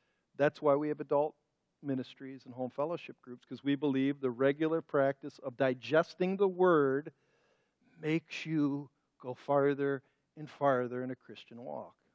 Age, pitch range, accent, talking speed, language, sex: 50-69, 125-160 Hz, American, 150 wpm, English, male